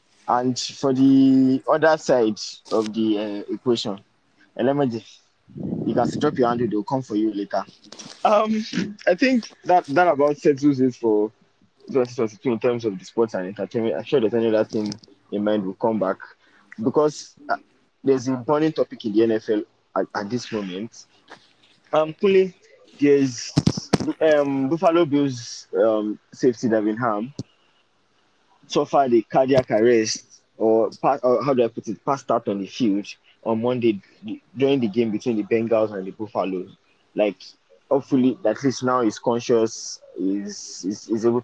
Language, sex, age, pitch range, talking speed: English, male, 20-39, 110-140 Hz, 160 wpm